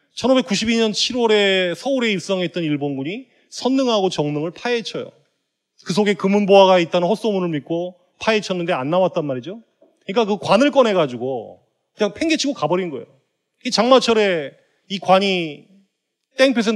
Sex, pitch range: male, 170-225 Hz